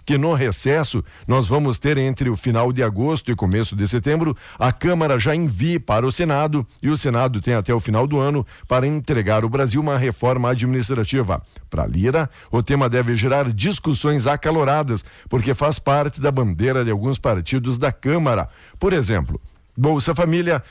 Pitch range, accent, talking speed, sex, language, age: 115-145 Hz, Brazilian, 175 wpm, male, Portuguese, 60-79